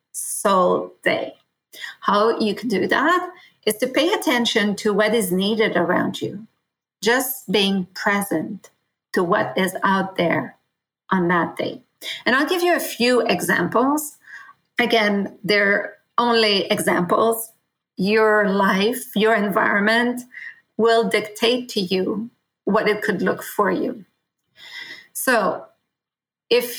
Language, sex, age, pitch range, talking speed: English, female, 40-59, 195-235 Hz, 125 wpm